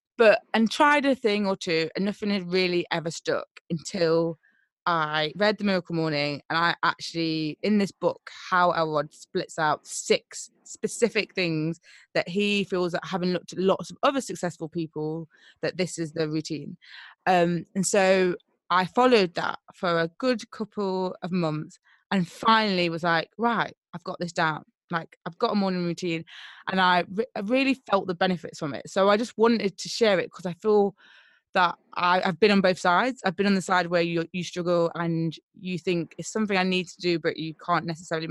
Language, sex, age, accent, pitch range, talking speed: English, female, 20-39, British, 165-200 Hz, 195 wpm